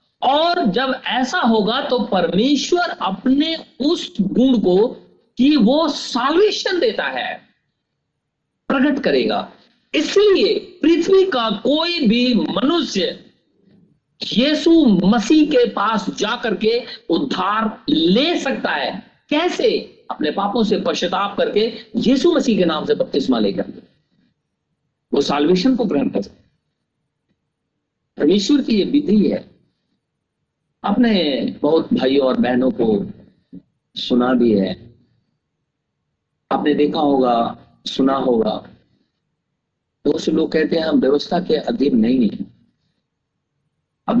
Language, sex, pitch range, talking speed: Hindi, male, 180-280 Hz, 115 wpm